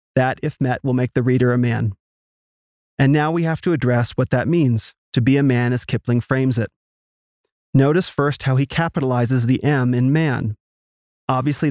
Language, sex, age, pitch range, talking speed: English, male, 30-49, 120-145 Hz, 185 wpm